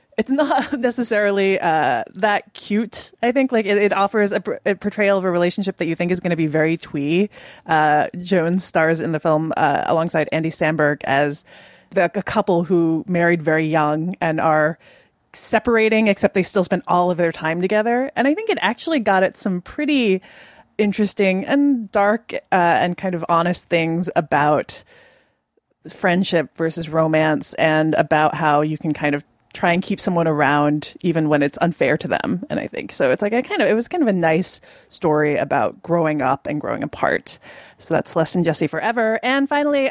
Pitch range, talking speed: 160-210 Hz, 190 wpm